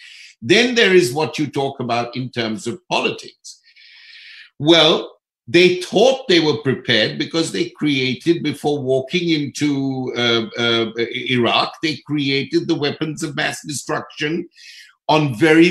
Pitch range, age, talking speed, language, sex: 135-185 Hz, 60-79, 135 wpm, Hindi, male